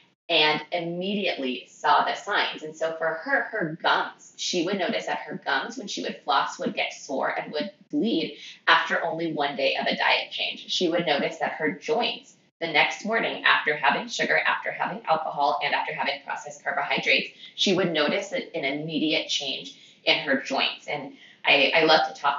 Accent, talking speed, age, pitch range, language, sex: American, 190 wpm, 20-39, 150-195 Hz, English, female